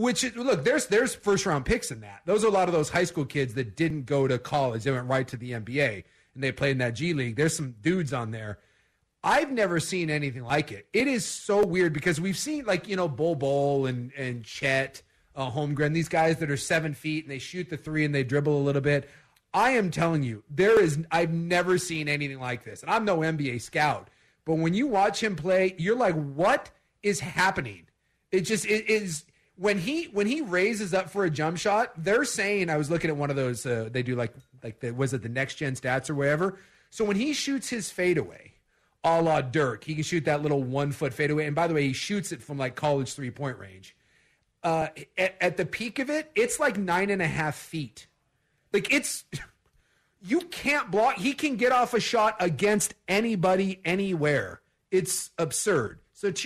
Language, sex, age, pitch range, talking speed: English, male, 30-49, 140-195 Hz, 215 wpm